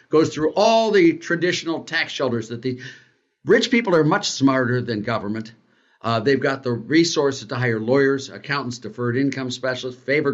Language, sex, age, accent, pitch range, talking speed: English, male, 60-79, American, 130-170 Hz, 170 wpm